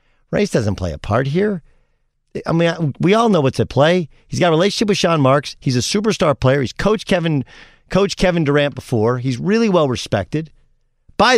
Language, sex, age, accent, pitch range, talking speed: English, male, 50-69, American, 110-150 Hz, 185 wpm